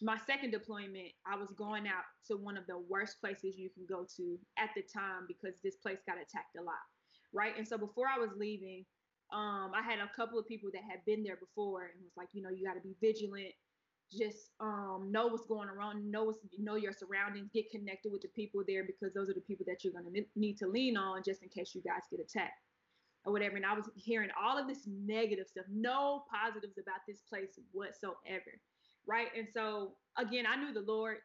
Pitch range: 190-220 Hz